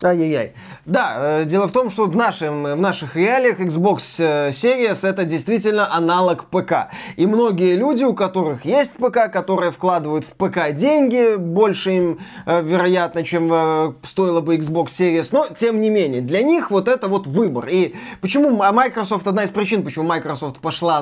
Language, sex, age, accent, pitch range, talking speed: Russian, male, 20-39, native, 165-225 Hz, 155 wpm